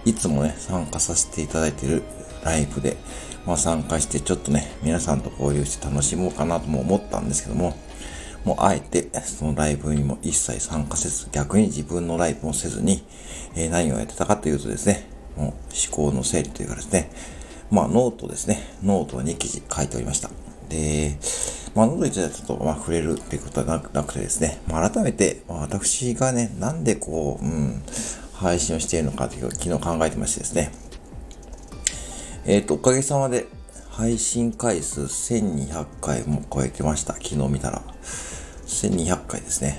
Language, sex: Japanese, male